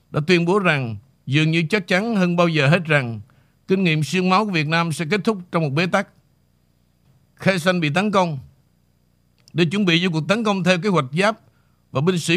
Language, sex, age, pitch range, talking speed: Vietnamese, male, 50-69, 140-180 Hz, 225 wpm